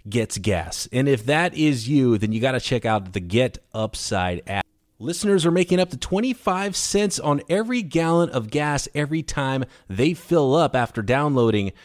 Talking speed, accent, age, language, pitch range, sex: 180 wpm, American, 30-49, English, 115-170 Hz, male